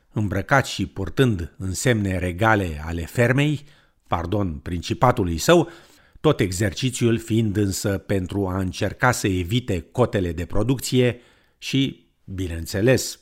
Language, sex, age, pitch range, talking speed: Romanian, male, 50-69, 95-125 Hz, 110 wpm